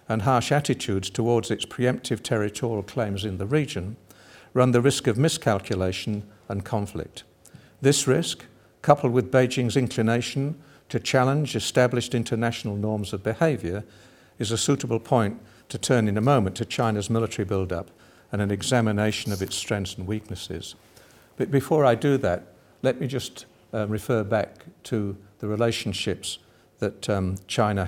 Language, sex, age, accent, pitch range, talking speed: English, male, 60-79, British, 100-125 Hz, 150 wpm